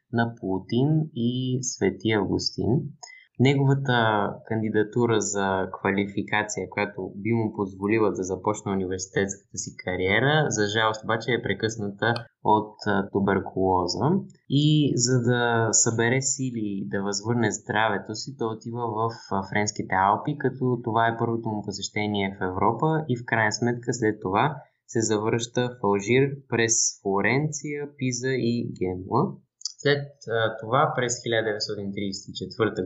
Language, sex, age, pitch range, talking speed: Bulgarian, male, 20-39, 105-130 Hz, 120 wpm